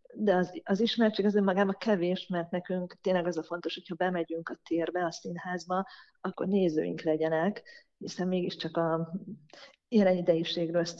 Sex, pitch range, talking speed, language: female, 170-195 Hz, 155 wpm, Hungarian